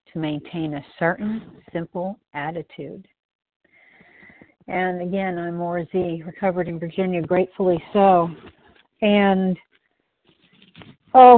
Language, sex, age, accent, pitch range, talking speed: English, female, 50-69, American, 180-230 Hz, 90 wpm